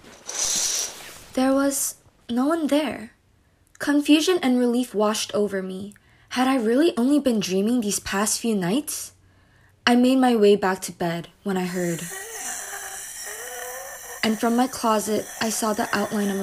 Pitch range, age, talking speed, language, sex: 205-255 Hz, 20-39, 145 wpm, English, female